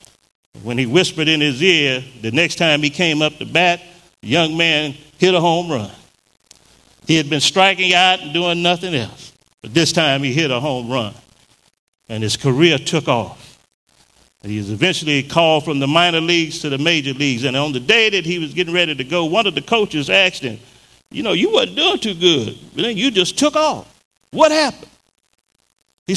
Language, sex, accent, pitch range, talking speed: English, male, American, 140-195 Hz, 200 wpm